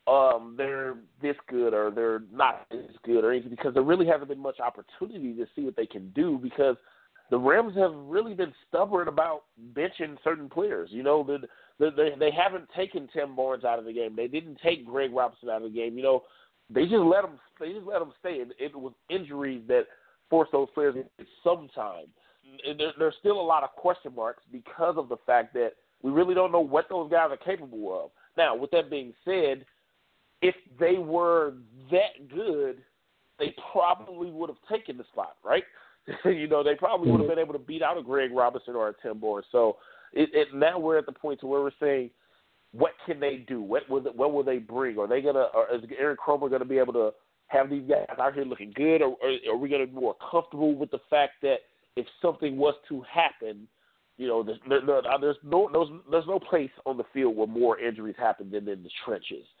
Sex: male